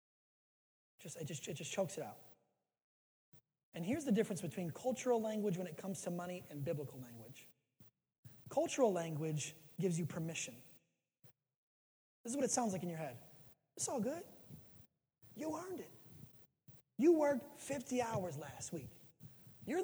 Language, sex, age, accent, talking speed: English, male, 30-49, American, 145 wpm